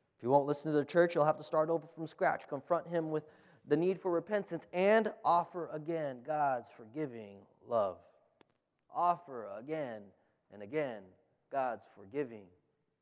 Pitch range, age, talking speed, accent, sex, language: 155-210 Hz, 20-39, 150 wpm, American, male, English